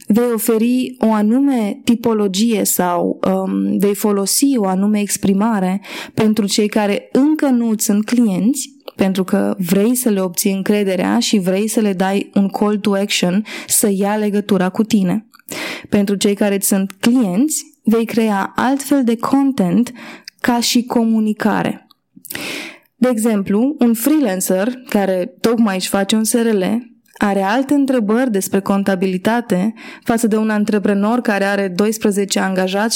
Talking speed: 135 wpm